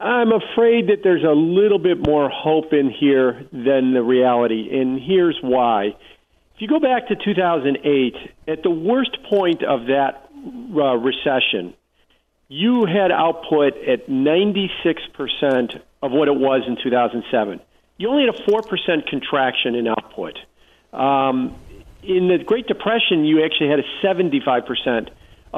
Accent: American